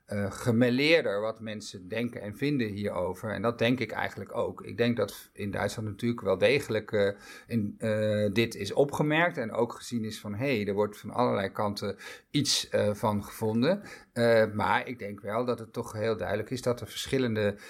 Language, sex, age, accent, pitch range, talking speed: Dutch, male, 50-69, Dutch, 105-125 Hz, 195 wpm